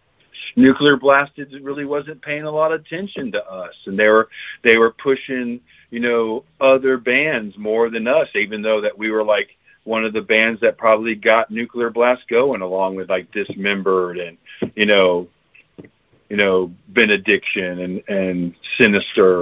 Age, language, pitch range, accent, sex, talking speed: 40-59, English, 105-135 Hz, American, male, 165 wpm